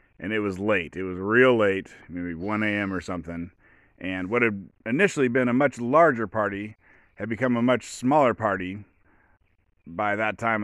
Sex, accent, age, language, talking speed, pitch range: male, American, 30-49, English, 175 wpm, 95-135 Hz